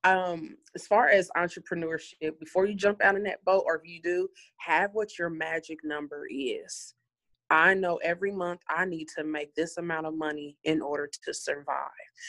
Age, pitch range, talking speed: 20-39, 155-180 Hz, 185 wpm